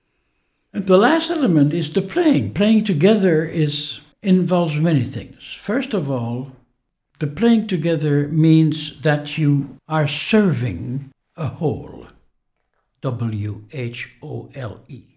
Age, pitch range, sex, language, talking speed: 60-79, 125-160 Hz, male, English, 105 wpm